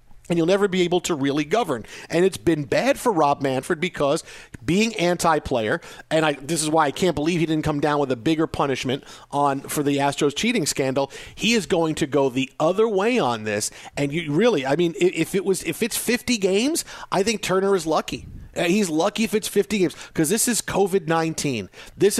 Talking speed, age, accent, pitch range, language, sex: 210 wpm, 50-69, American, 155-205 Hz, English, male